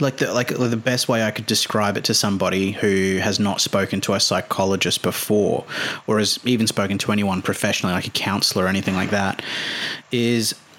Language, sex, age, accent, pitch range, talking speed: English, male, 30-49, Australian, 95-110 Hz, 195 wpm